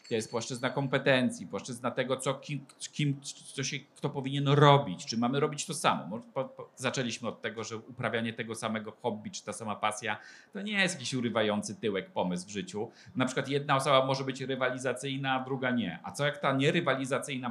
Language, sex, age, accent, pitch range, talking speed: Polish, male, 40-59, native, 110-135 Hz, 195 wpm